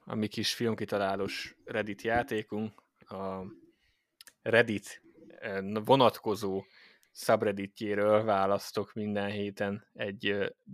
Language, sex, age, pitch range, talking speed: Hungarian, male, 20-39, 100-120 Hz, 80 wpm